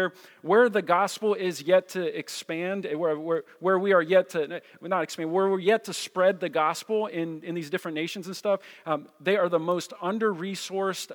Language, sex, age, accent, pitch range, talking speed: English, male, 40-59, American, 150-185 Hz, 195 wpm